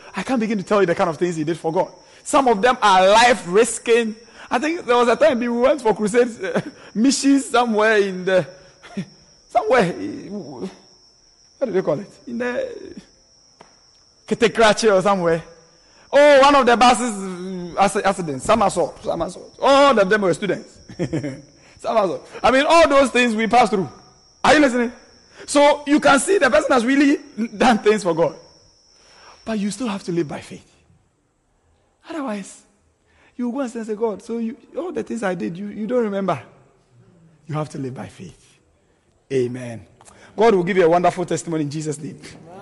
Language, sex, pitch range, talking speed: English, male, 185-250 Hz, 175 wpm